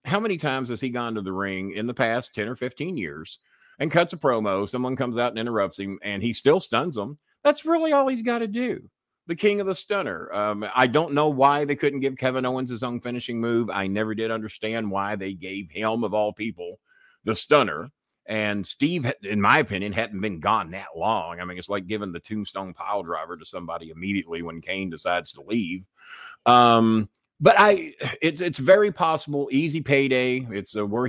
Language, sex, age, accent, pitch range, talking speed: English, male, 50-69, American, 100-135 Hz, 210 wpm